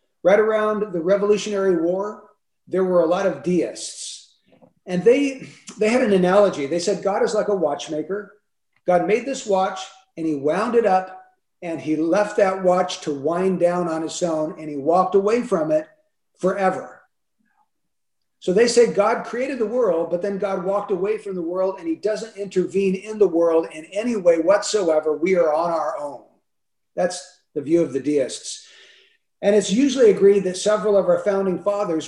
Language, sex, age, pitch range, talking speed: English, male, 50-69, 175-215 Hz, 185 wpm